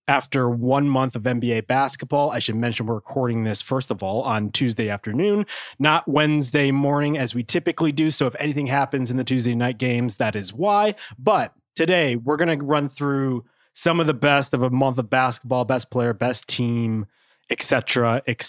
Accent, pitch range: American, 130-170 Hz